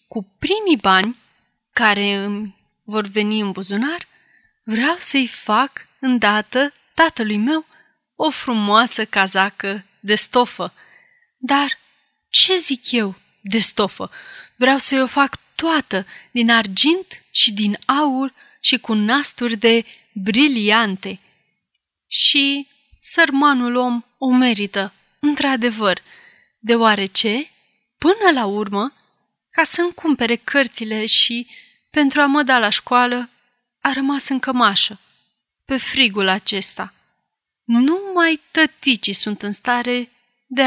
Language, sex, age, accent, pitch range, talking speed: Romanian, female, 30-49, native, 210-285 Hz, 115 wpm